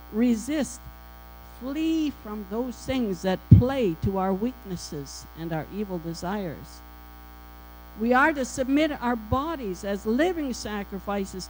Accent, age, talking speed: American, 60-79, 120 wpm